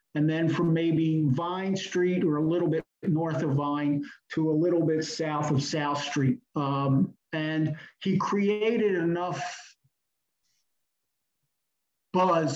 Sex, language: male, English